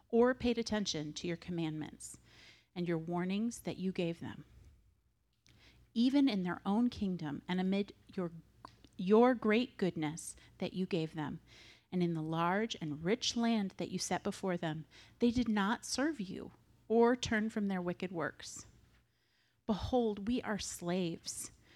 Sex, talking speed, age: female, 150 wpm, 40-59